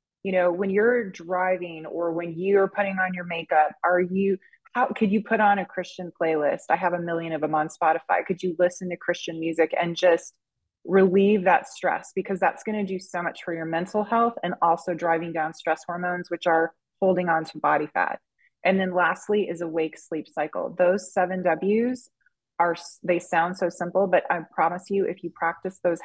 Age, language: 20-39, English